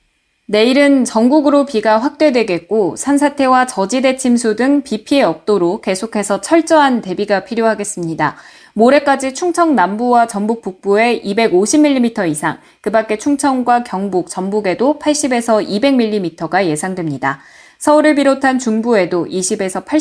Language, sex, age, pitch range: Korean, female, 20-39, 180-265 Hz